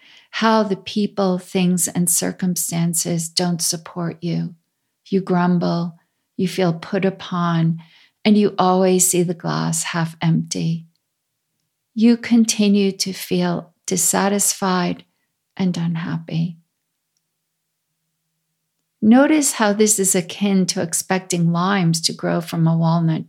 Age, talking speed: 50-69, 110 wpm